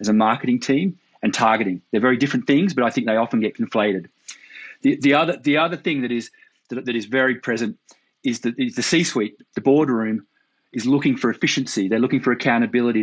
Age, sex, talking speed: 30-49, male, 205 wpm